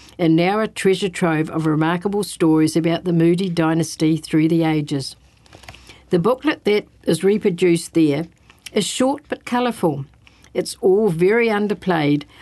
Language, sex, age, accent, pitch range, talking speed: English, female, 60-79, Australian, 165-200 Hz, 140 wpm